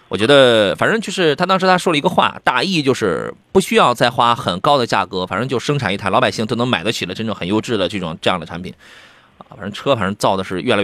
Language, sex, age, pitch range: Chinese, male, 30-49, 115-165 Hz